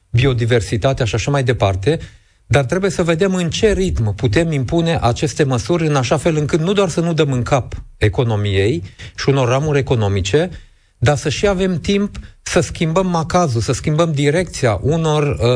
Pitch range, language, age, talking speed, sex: 110-150 Hz, Romanian, 40-59, 170 wpm, male